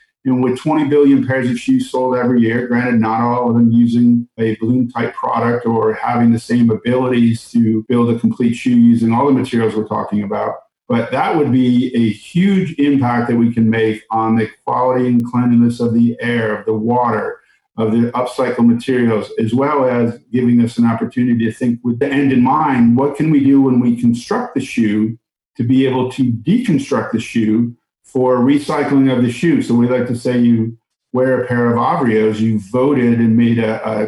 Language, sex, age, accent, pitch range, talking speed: English, male, 50-69, American, 115-130 Hz, 205 wpm